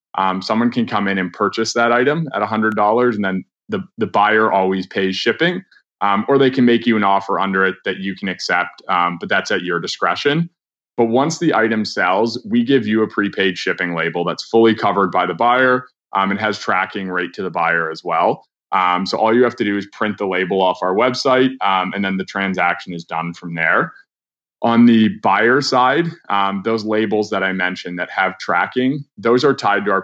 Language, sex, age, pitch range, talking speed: English, male, 20-39, 95-120 Hz, 215 wpm